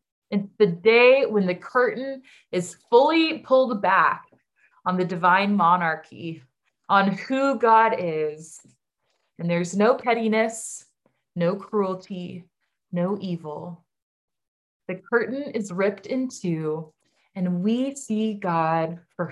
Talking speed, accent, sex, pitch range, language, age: 115 wpm, American, female, 165-215 Hz, English, 20-39